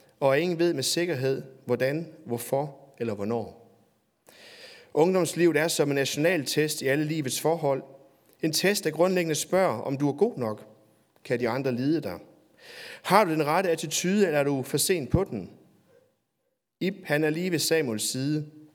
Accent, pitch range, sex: native, 130-170 Hz, male